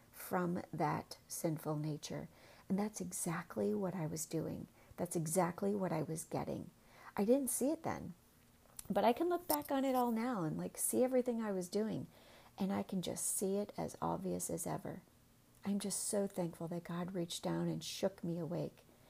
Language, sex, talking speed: English, female, 190 wpm